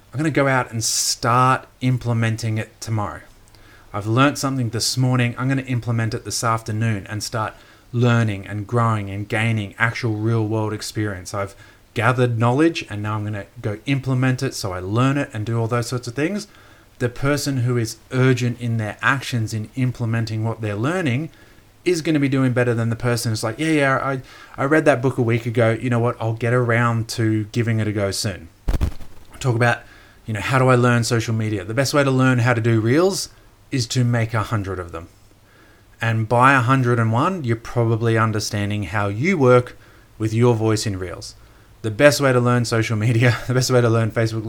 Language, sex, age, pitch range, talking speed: English, male, 30-49, 110-125 Hz, 210 wpm